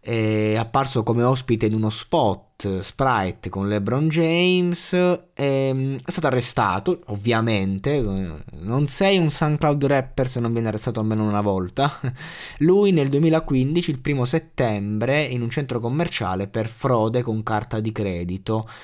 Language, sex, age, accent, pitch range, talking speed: Italian, male, 20-39, native, 105-135 Hz, 135 wpm